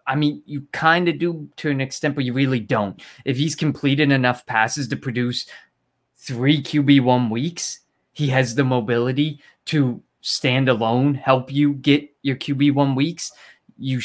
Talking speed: 160 wpm